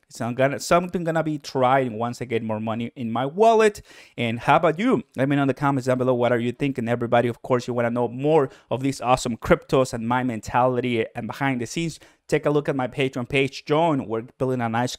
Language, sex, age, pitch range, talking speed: English, male, 30-49, 120-145 Hz, 250 wpm